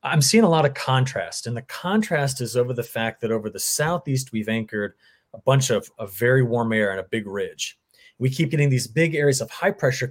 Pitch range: 115-155 Hz